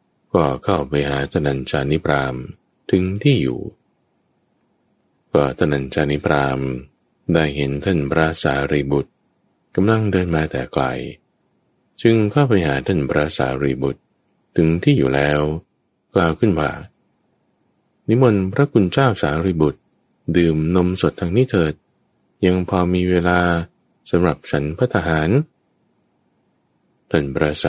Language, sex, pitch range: English, male, 70-95 Hz